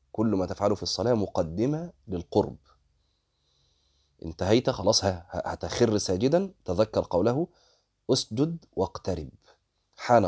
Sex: male